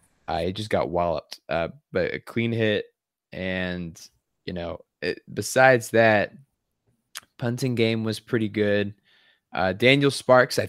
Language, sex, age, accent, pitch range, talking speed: English, male, 20-39, American, 95-120 Hz, 140 wpm